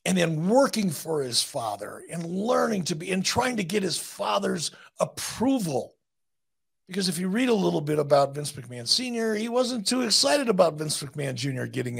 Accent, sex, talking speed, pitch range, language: American, male, 185 wpm, 145-200 Hz, English